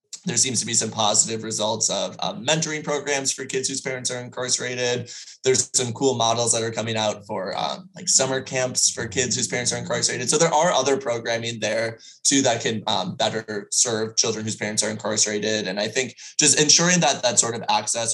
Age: 20-39